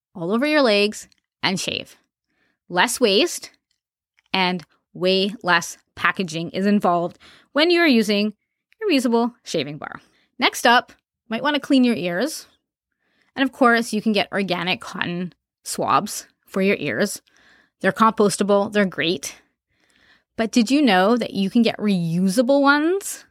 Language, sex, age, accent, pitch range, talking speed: English, female, 20-39, American, 190-245 Hz, 145 wpm